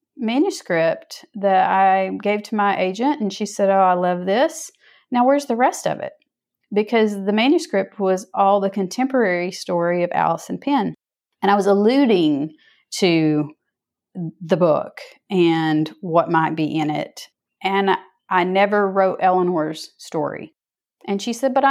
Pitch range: 175-230 Hz